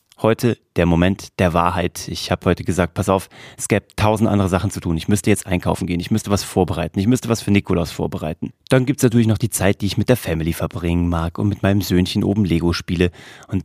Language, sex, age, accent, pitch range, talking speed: German, male, 30-49, German, 95-120 Hz, 240 wpm